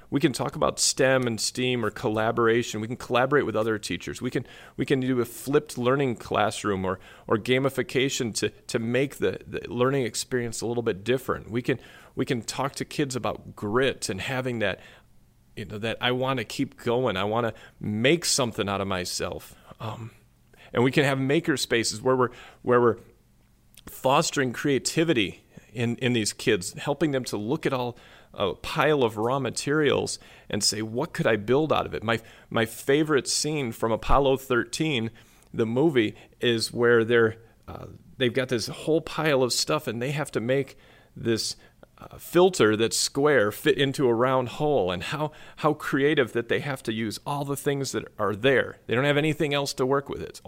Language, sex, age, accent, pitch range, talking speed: English, male, 40-59, American, 110-135 Hz, 195 wpm